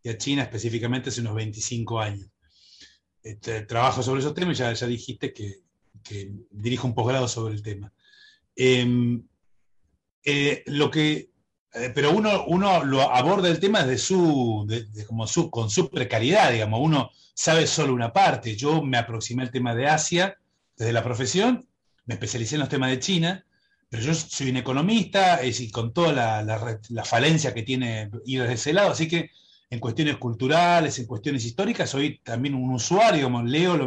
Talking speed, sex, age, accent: 180 wpm, male, 30-49, Argentinian